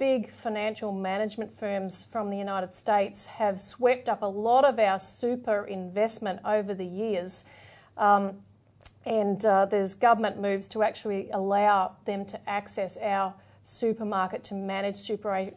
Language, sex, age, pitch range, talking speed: English, female, 40-59, 200-225 Hz, 140 wpm